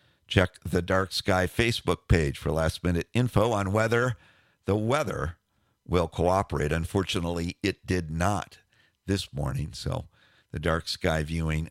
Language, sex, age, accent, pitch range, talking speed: English, male, 50-69, American, 90-120 Hz, 135 wpm